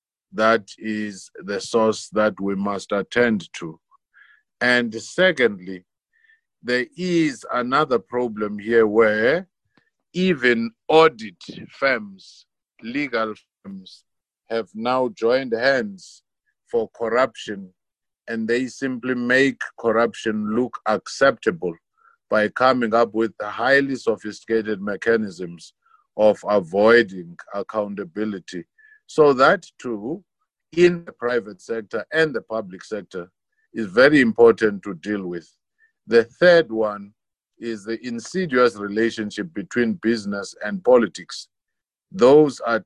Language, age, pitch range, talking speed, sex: English, 50-69, 105-135 Hz, 105 wpm, male